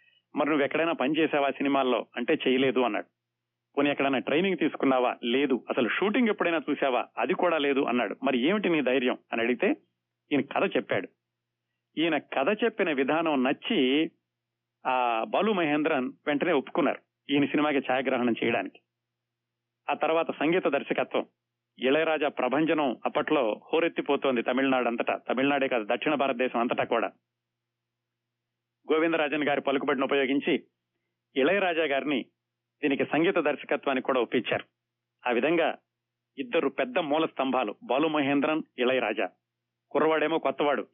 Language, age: Telugu, 40-59